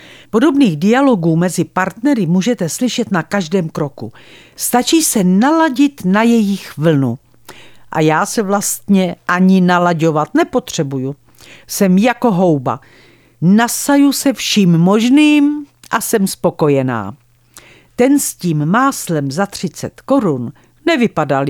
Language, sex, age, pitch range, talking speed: Czech, female, 50-69, 155-235 Hz, 110 wpm